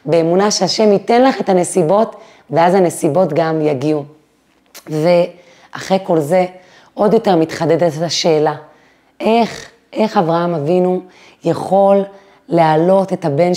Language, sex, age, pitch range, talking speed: Hebrew, female, 30-49, 175-225 Hz, 115 wpm